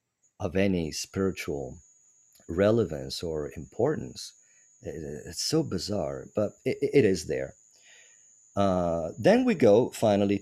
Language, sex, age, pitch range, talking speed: English, male, 50-69, 85-110 Hz, 110 wpm